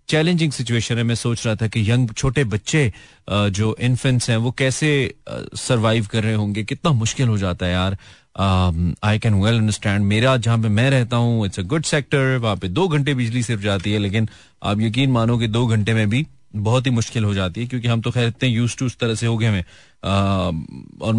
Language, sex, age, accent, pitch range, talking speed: Hindi, male, 30-49, native, 105-125 Hz, 205 wpm